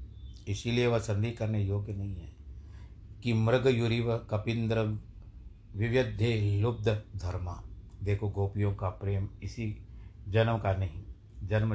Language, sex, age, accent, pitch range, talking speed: Hindi, male, 60-79, native, 100-120 Hz, 115 wpm